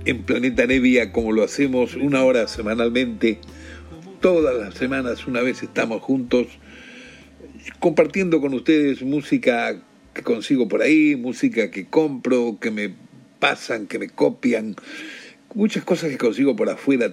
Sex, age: male, 60-79